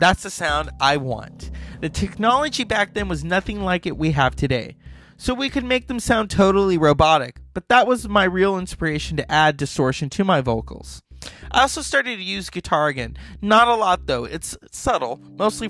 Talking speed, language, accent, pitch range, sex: 190 wpm, English, American, 135-195 Hz, male